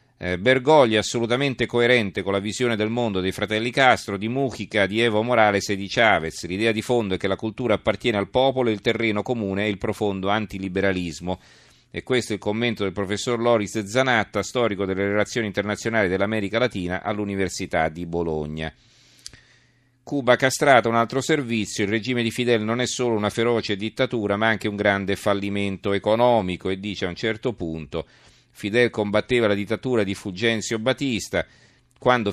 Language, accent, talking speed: Italian, native, 165 wpm